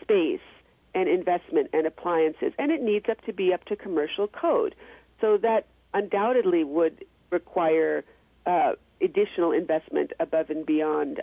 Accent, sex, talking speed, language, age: American, female, 140 wpm, English, 50-69